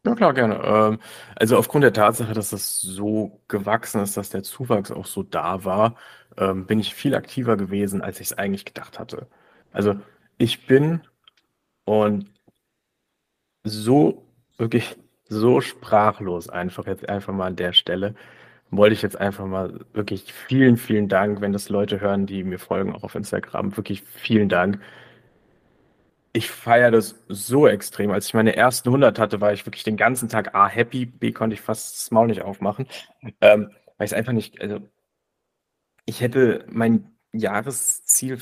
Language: German